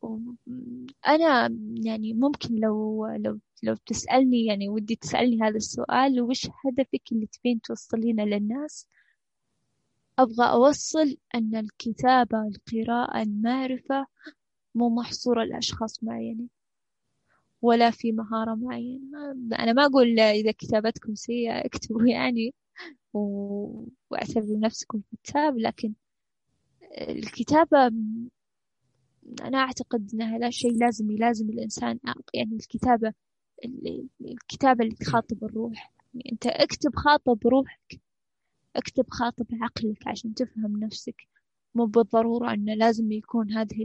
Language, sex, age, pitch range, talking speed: Arabic, female, 10-29, 220-250 Hz, 105 wpm